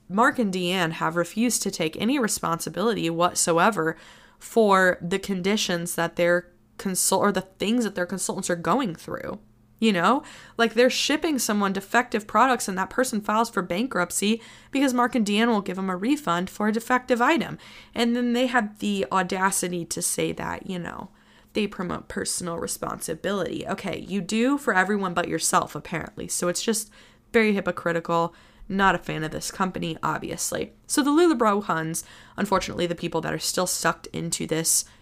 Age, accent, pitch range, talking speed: 20-39, American, 170-230 Hz, 170 wpm